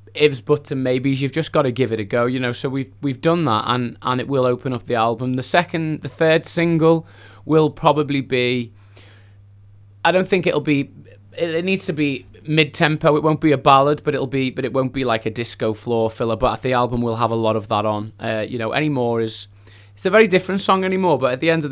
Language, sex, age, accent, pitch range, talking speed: English, male, 20-39, British, 115-145 Hz, 250 wpm